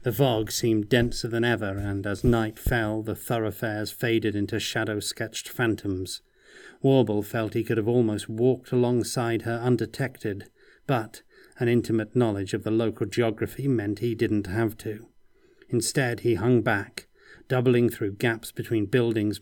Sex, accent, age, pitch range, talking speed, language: male, British, 40-59, 105-120 Hz, 150 wpm, English